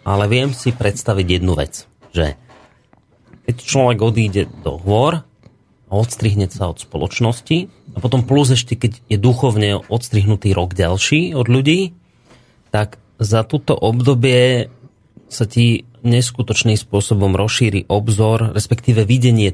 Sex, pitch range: male, 100-125 Hz